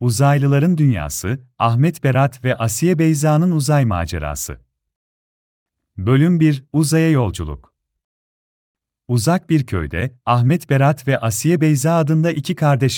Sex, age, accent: male, 40-59, native